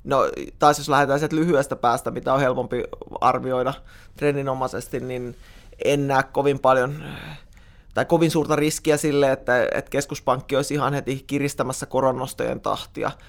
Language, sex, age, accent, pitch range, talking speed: Finnish, male, 20-39, native, 125-145 Hz, 135 wpm